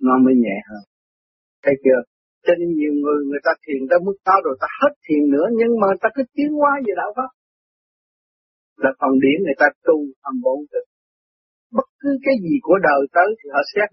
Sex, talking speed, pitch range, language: male, 210 wpm, 135-205 Hz, Vietnamese